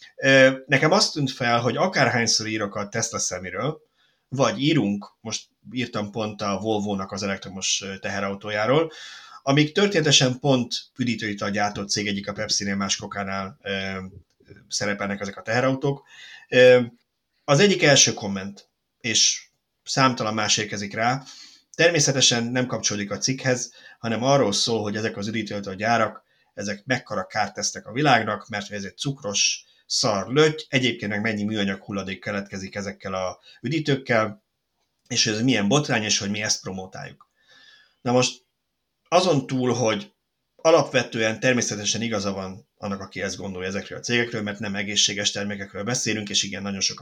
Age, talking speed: 30-49, 145 wpm